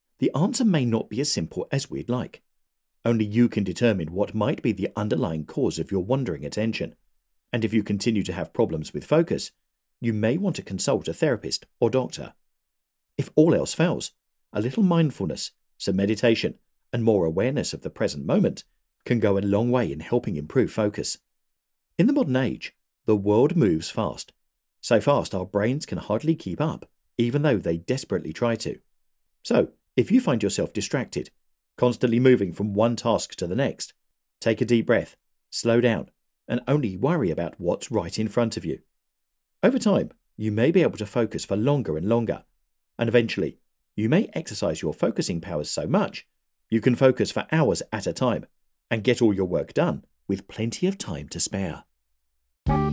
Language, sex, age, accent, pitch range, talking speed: English, male, 50-69, British, 95-120 Hz, 185 wpm